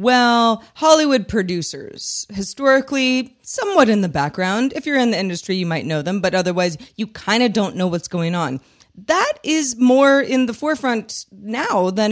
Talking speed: 175 wpm